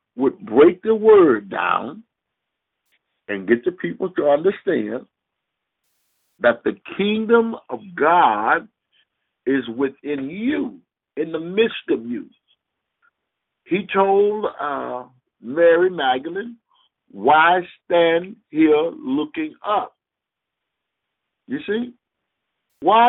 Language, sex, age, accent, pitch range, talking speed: English, male, 50-69, American, 185-255 Hz, 95 wpm